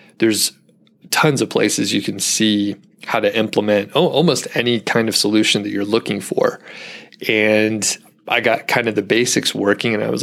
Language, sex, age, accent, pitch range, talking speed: English, male, 30-49, American, 100-120 Hz, 175 wpm